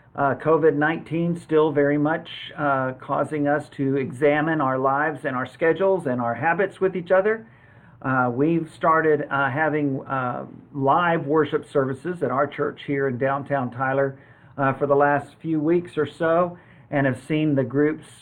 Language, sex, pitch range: English, male, 135-160 Hz